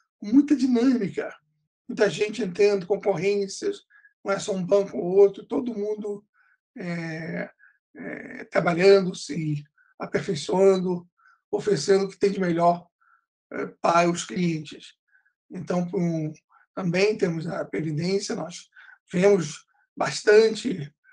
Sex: male